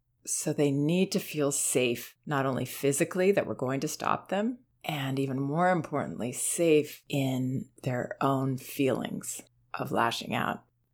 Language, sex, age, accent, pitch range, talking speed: English, female, 30-49, American, 120-150 Hz, 150 wpm